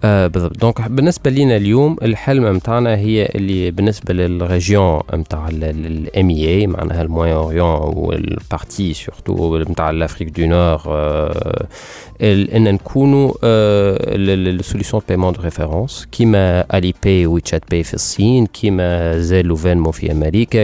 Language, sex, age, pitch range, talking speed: Arabic, male, 40-59, 85-105 Hz, 120 wpm